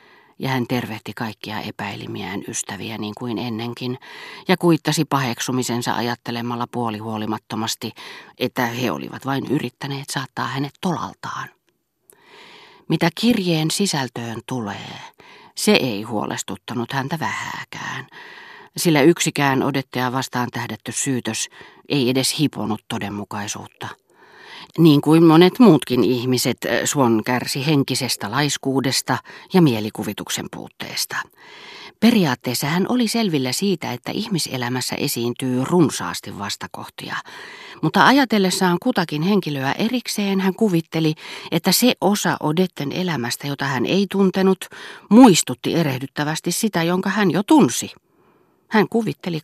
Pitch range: 120-185 Hz